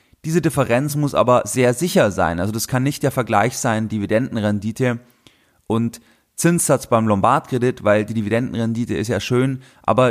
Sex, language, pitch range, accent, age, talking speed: male, German, 115-145 Hz, German, 30-49, 155 wpm